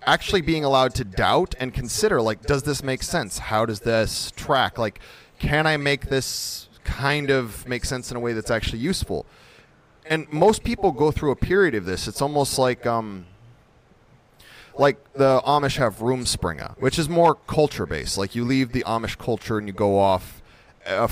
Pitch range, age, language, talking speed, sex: 105-140 Hz, 30-49, English, 185 wpm, male